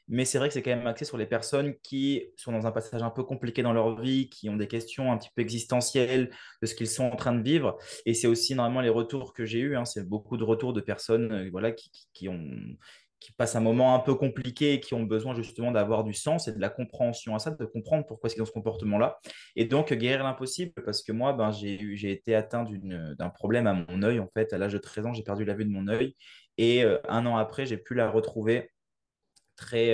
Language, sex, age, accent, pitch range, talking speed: French, male, 20-39, French, 110-130 Hz, 260 wpm